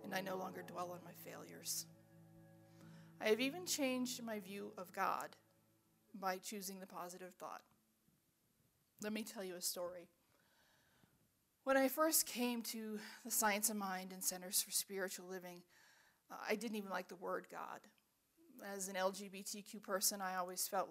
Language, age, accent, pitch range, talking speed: English, 40-59, American, 180-225 Hz, 160 wpm